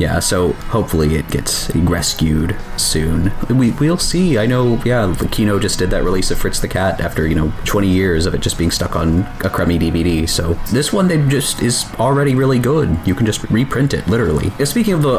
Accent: American